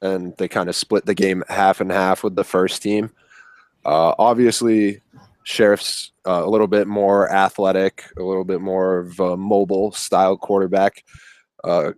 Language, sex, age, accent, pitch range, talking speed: English, male, 10-29, American, 95-105 Hz, 160 wpm